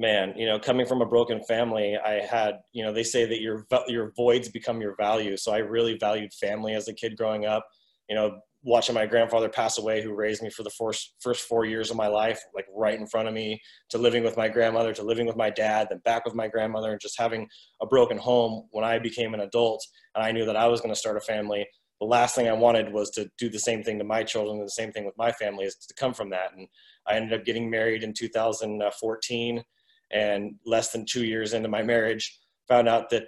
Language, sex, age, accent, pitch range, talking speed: English, male, 20-39, American, 105-115 Hz, 250 wpm